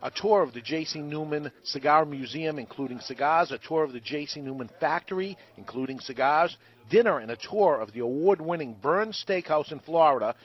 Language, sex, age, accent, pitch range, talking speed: English, male, 50-69, American, 135-170 Hz, 170 wpm